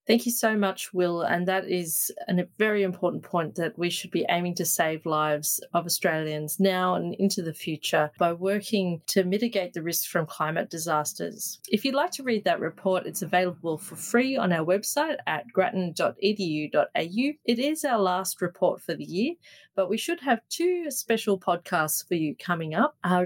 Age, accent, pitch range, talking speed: 30-49, Australian, 170-220 Hz, 185 wpm